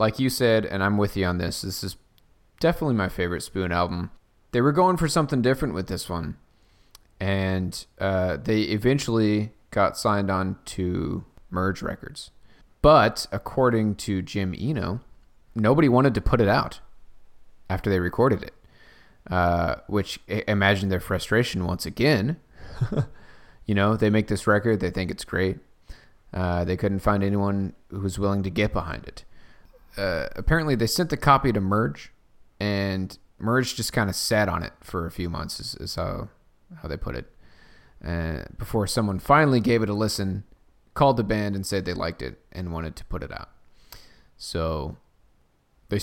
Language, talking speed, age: English, 170 wpm, 20-39